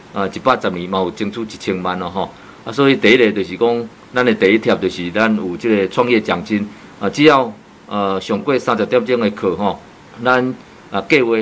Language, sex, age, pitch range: Chinese, male, 50-69, 95-120 Hz